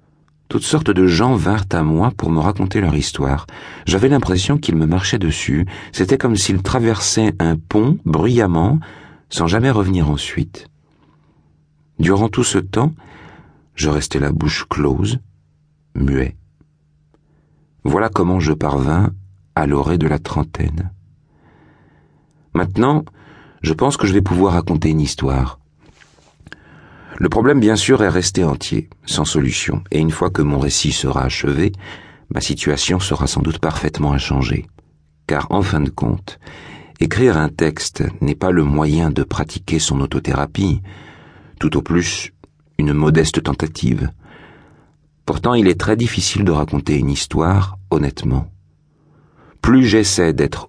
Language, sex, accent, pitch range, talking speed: French, male, French, 75-100 Hz, 140 wpm